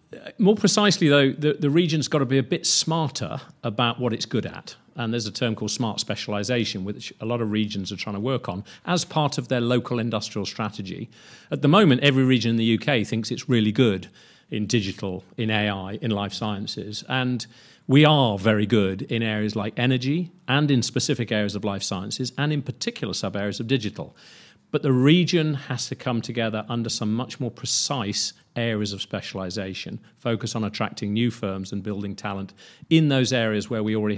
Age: 40-59